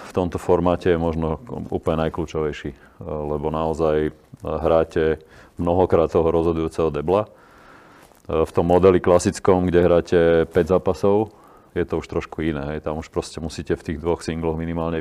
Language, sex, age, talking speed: Slovak, male, 30-49, 145 wpm